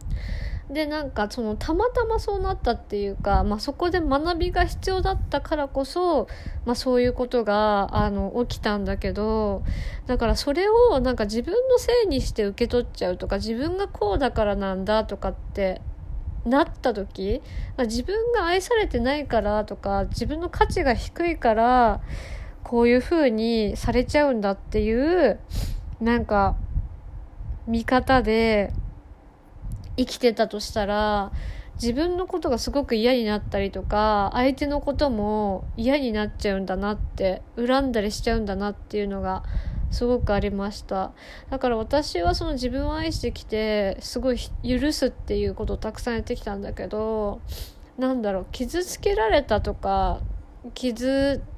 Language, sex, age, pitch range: Japanese, female, 20-39, 200-275 Hz